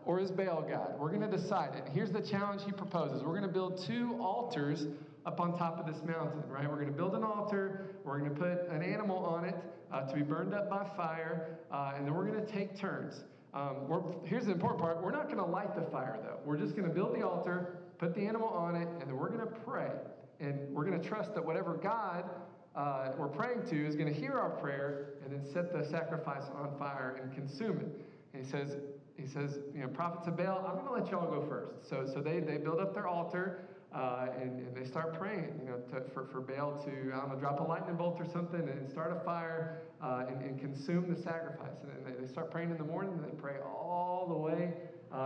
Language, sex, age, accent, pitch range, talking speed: English, male, 40-59, American, 140-180 Hz, 250 wpm